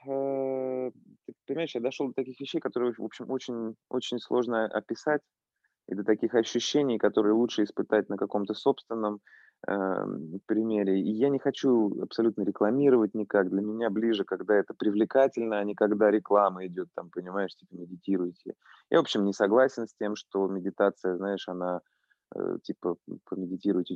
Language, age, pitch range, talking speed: Russian, 20-39, 95-120 Hz, 155 wpm